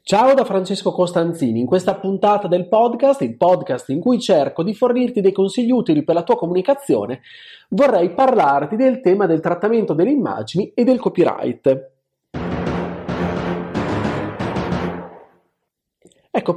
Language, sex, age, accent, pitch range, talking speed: Italian, male, 30-49, native, 165-240 Hz, 125 wpm